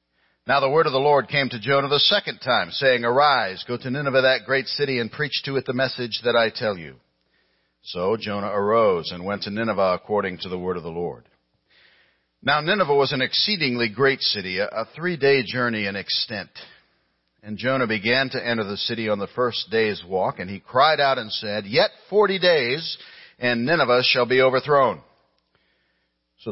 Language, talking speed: English, 190 wpm